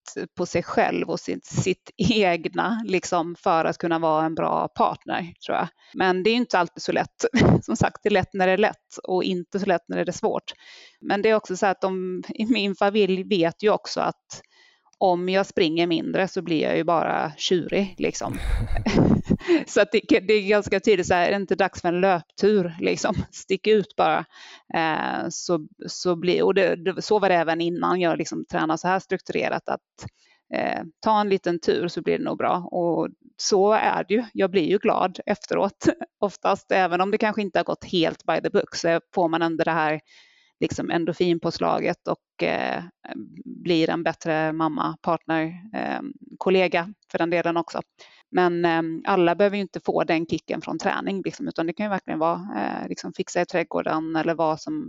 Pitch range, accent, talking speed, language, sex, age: 170-205 Hz, native, 205 wpm, Swedish, female, 30-49